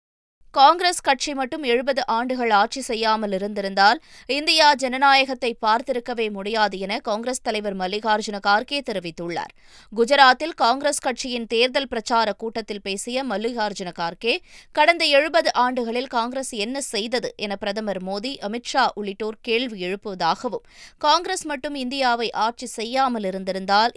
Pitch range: 210-270 Hz